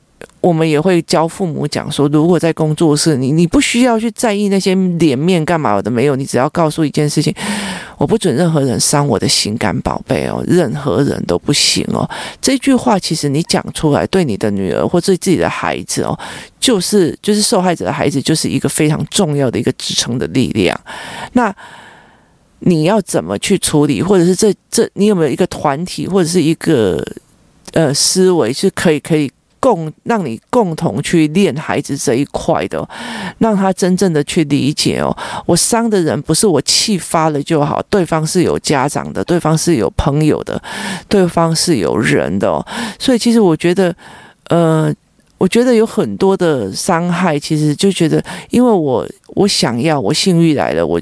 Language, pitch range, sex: Chinese, 155-195 Hz, male